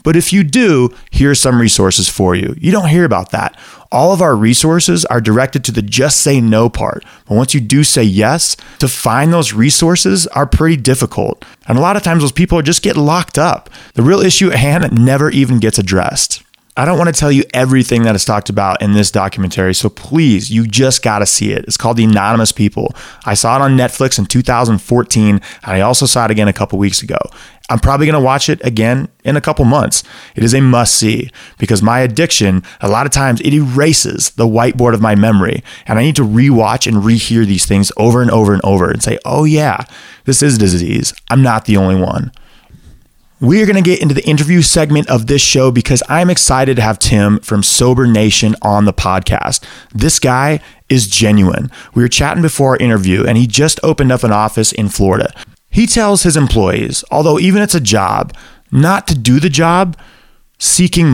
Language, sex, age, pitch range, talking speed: English, male, 20-39, 110-150 Hz, 215 wpm